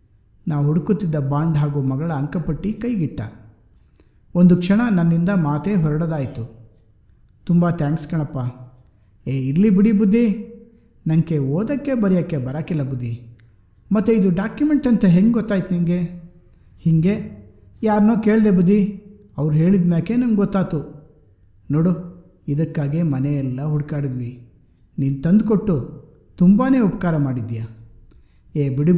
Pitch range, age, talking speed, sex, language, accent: 130-190 Hz, 50-69, 105 wpm, male, Kannada, native